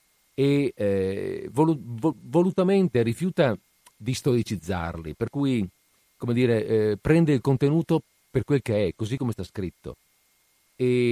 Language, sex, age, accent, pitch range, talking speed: Italian, male, 50-69, native, 100-135 Hz, 125 wpm